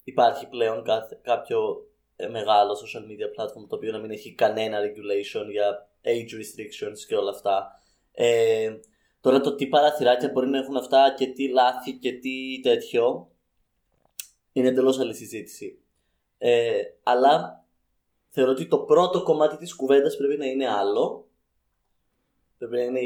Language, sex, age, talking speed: Greek, male, 20-39, 140 wpm